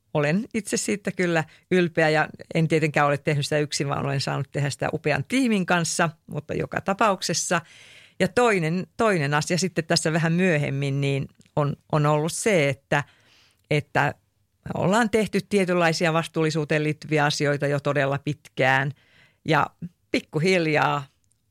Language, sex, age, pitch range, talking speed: English, female, 50-69, 145-175 Hz, 135 wpm